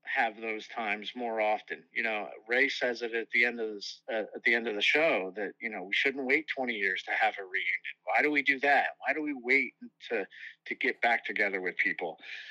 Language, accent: English, American